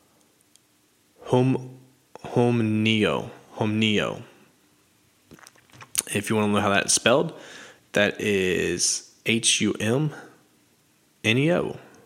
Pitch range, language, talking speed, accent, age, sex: 100-120 Hz, English, 85 wpm, American, 20-39, male